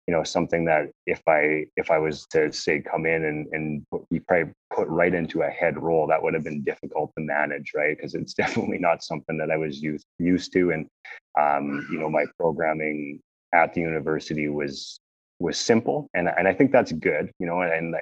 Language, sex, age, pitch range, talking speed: English, male, 30-49, 75-80 Hz, 215 wpm